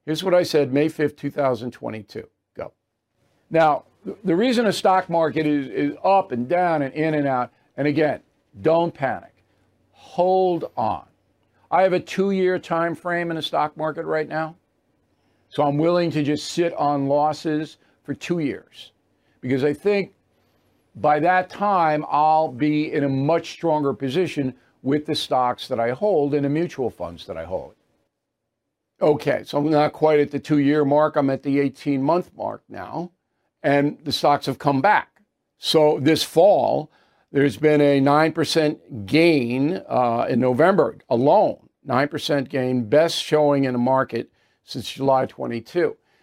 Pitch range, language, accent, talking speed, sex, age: 140-165 Hz, English, American, 160 wpm, male, 50-69